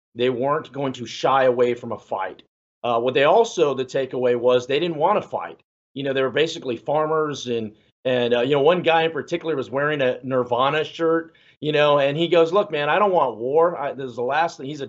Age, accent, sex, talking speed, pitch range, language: 40-59, American, male, 240 wpm, 130-160 Hz, English